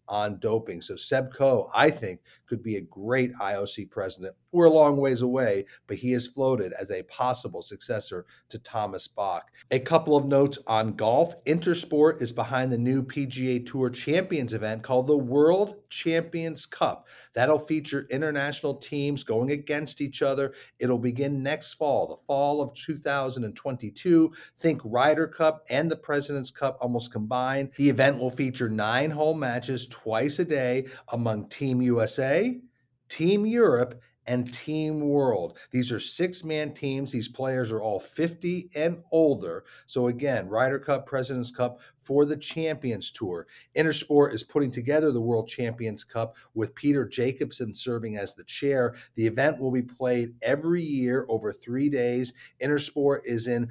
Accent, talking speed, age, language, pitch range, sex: American, 160 wpm, 50-69, English, 120-150 Hz, male